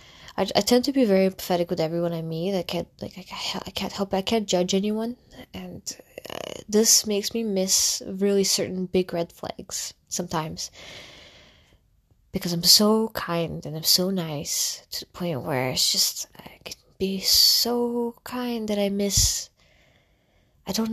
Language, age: English, 20-39